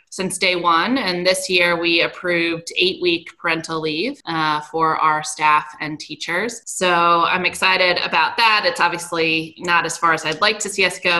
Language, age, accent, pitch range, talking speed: English, 20-39, American, 155-175 Hz, 180 wpm